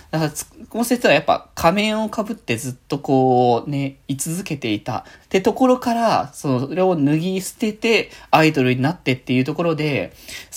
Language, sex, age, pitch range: Japanese, male, 20-39, 120-195 Hz